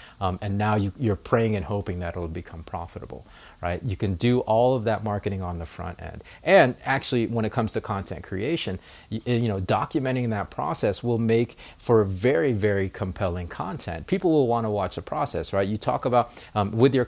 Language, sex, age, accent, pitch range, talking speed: English, male, 30-49, American, 95-115 Hz, 210 wpm